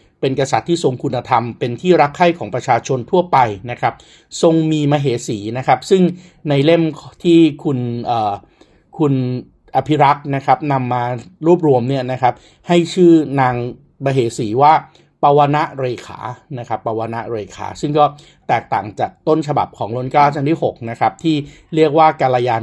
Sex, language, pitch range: male, Thai, 120-155 Hz